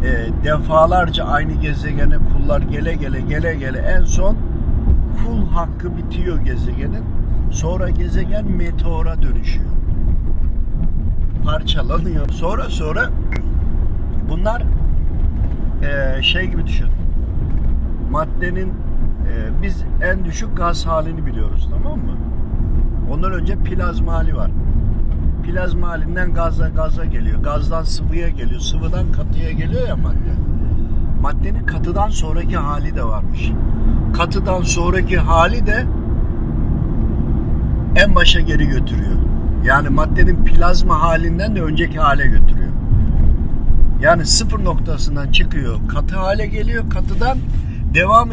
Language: Japanese